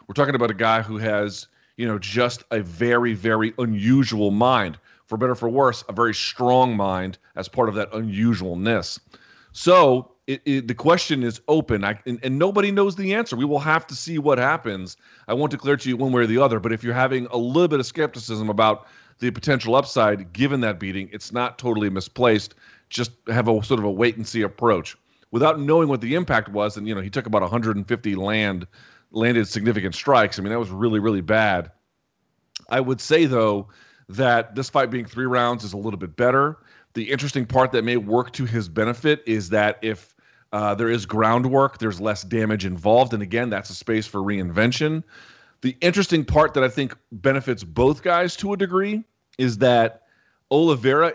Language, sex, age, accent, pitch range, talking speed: English, male, 40-59, American, 110-135 Hz, 200 wpm